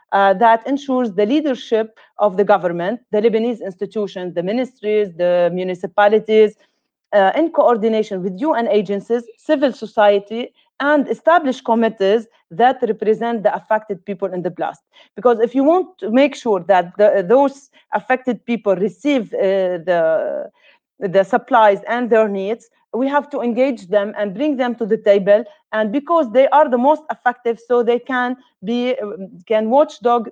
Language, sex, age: Turkish, female, 40-59